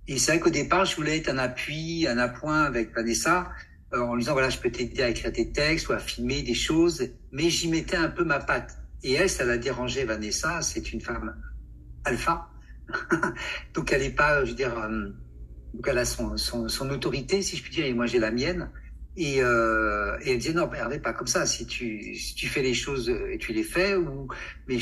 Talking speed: 225 wpm